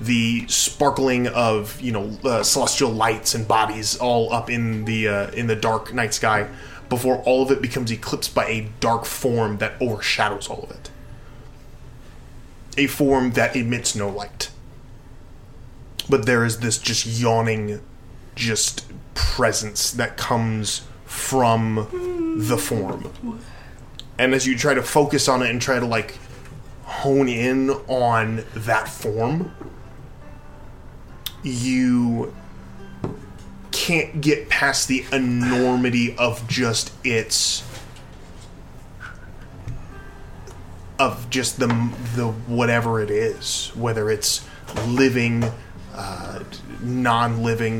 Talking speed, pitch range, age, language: 115 wpm, 110-130 Hz, 20-39, English